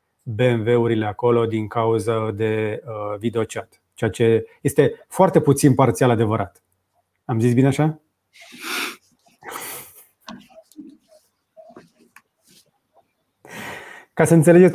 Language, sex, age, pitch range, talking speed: Romanian, male, 30-49, 120-160 Hz, 85 wpm